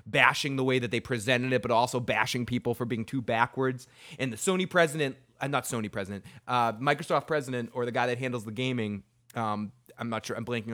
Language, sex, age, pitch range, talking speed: English, male, 20-39, 120-165 Hz, 220 wpm